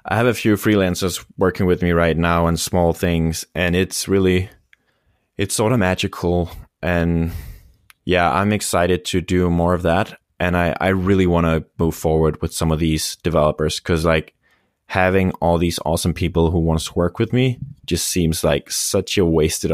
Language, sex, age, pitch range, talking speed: English, male, 20-39, 85-95 Hz, 185 wpm